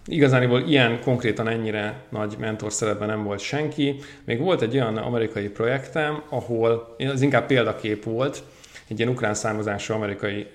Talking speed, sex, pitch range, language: 150 wpm, male, 105-125 Hz, Hungarian